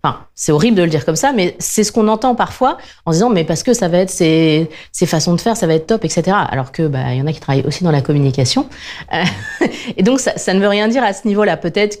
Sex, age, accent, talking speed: female, 30-49, French, 290 wpm